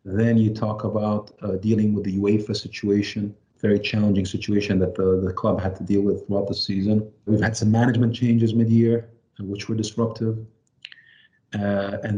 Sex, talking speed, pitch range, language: male, 170 wpm, 95-115 Hz, English